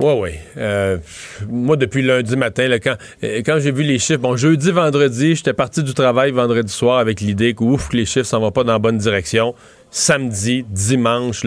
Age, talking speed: 40-59, 210 wpm